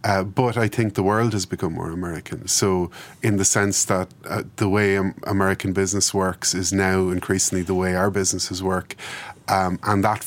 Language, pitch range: English, 95-115 Hz